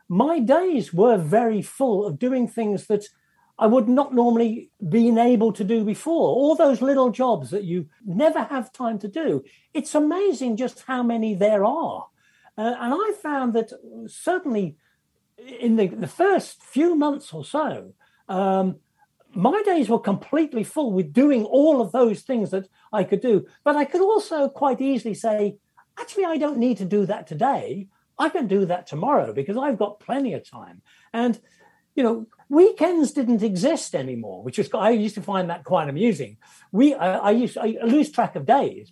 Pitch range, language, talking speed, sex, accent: 195-270 Hz, English, 185 wpm, male, British